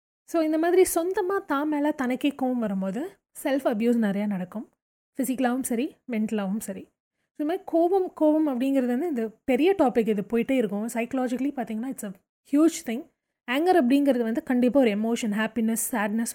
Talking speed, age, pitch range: 160 wpm, 20-39, 215-285 Hz